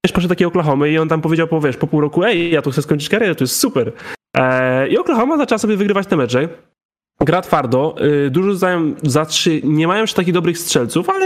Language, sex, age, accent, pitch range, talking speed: Polish, male, 10-29, native, 140-175 Hz, 230 wpm